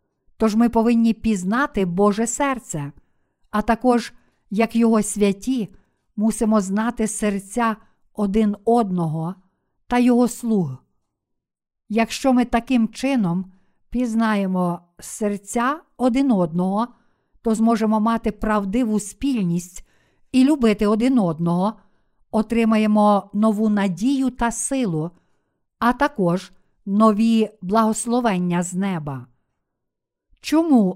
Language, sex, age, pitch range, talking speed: Ukrainian, female, 50-69, 190-240 Hz, 95 wpm